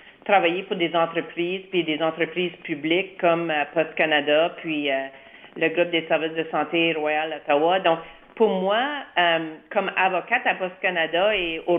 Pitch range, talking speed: 160-195 Hz, 170 wpm